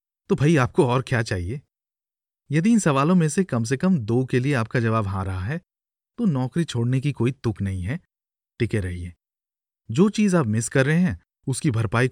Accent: native